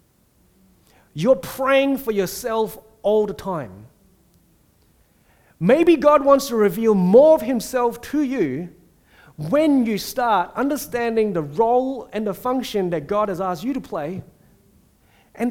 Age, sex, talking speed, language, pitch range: 30-49, male, 130 wpm, English, 190-255 Hz